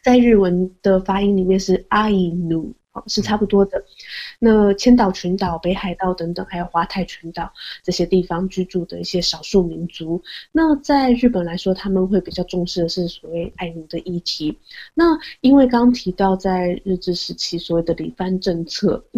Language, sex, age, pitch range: Chinese, female, 20-39, 175-210 Hz